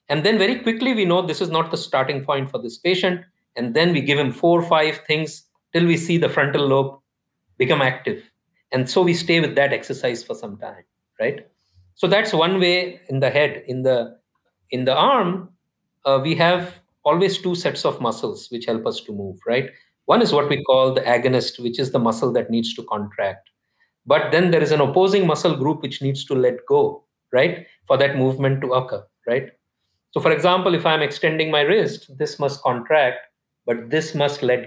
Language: English